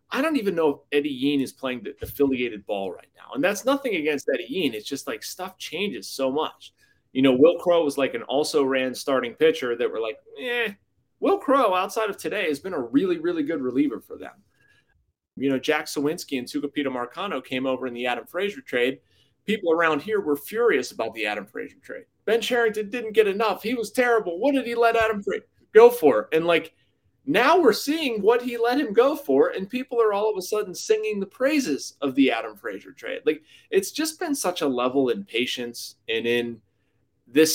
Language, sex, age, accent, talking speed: English, male, 30-49, American, 215 wpm